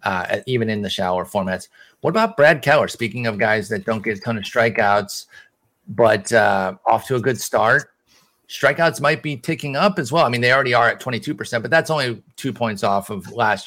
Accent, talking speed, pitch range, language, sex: American, 215 wpm, 110-145 Hz, English, male